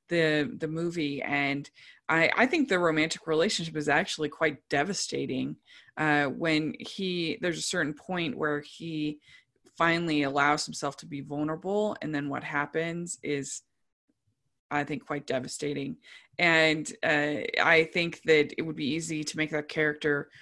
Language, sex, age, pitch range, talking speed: English, female, 20-39, 145-170 Hz, 150 wpm